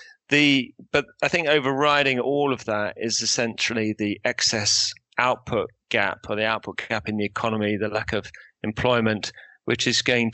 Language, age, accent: English, 40-59, British